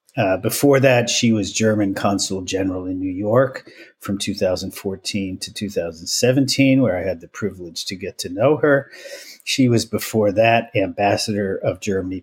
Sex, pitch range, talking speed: male, 95-125 Hz, 155 wpm